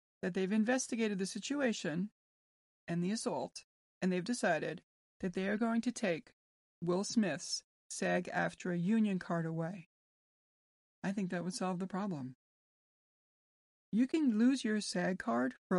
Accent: American